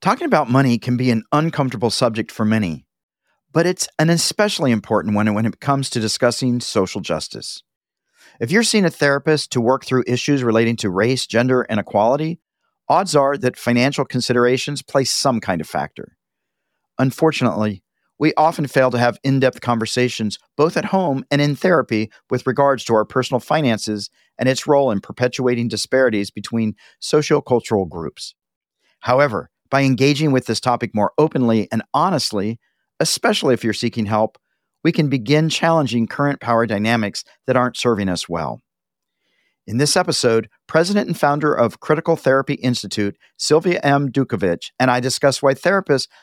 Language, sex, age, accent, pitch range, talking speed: English, male, 40-59, American, 115-145 Hz, 160 wpm